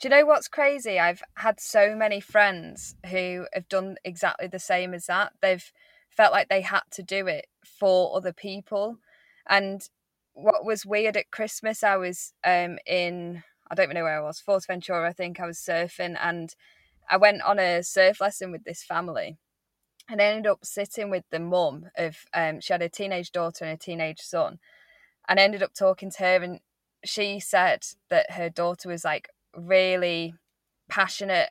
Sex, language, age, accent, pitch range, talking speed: female, English, 10-29, British, 175-200 Hz, 185 wpm